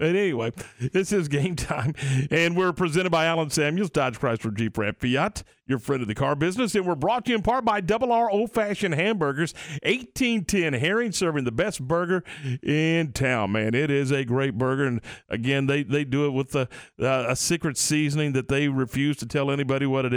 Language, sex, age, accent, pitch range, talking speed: English, male, 40-59, American, 130-185 Hz, 210 wpm